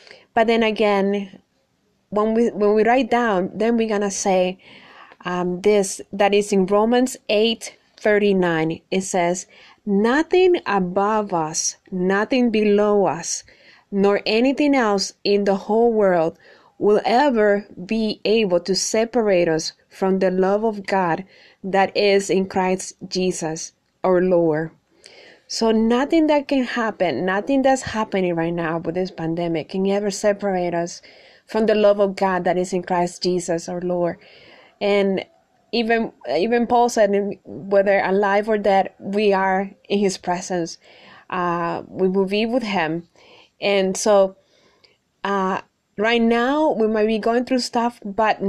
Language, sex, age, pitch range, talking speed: English, female, 20-39, 185-220 Hz, 145 wpm